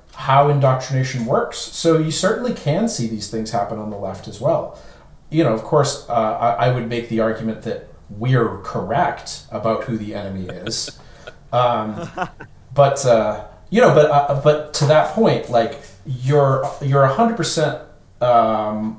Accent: American